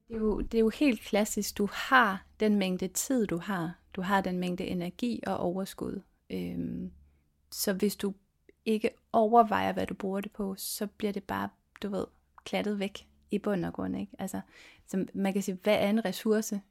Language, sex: Danish, female